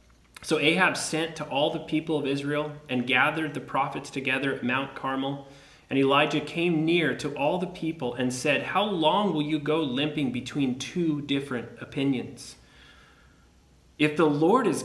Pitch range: 120-160 Hz